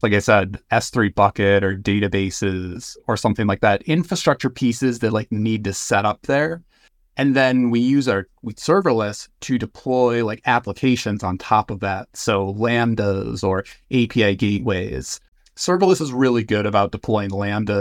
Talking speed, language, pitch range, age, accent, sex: 155 wpm, English, 100-125 Hz, 30-49, American, male